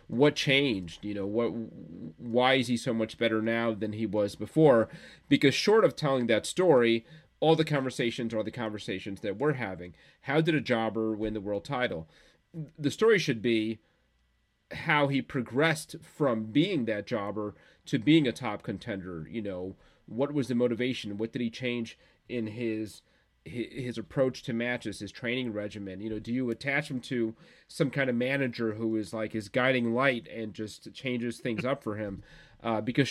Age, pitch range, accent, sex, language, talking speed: 30-49, 110-130 Hz, American, male, English, 180 wpm